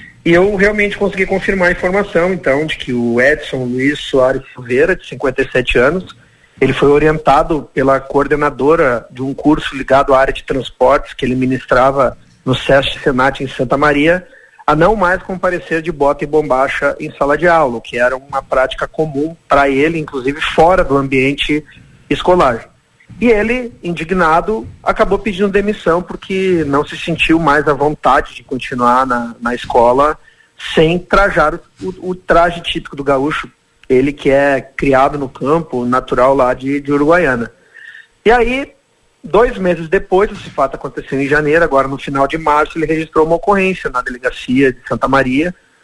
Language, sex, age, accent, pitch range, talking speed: Portuguese, male, 40-59, Brazilian, 135-170 Hz, 165 wpm